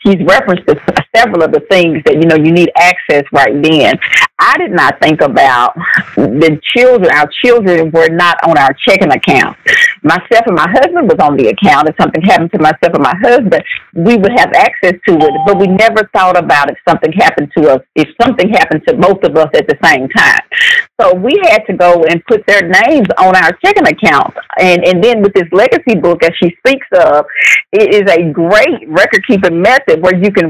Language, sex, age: English, female, 40-59